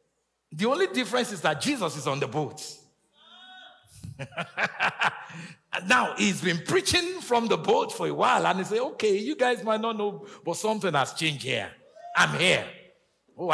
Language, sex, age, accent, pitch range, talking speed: English, male, 50-69, Nigerian, 140-230 Hz, 165 wpm